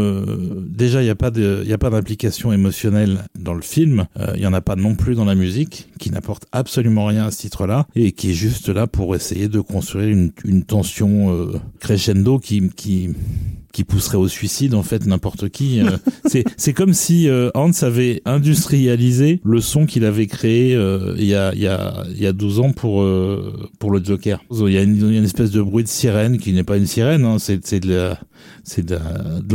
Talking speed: 215 wpm